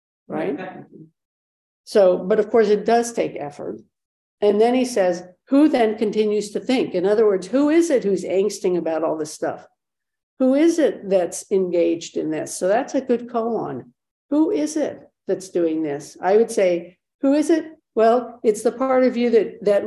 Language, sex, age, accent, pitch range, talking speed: English, female, 60-79, American, 180-240 Hz, 185 wpm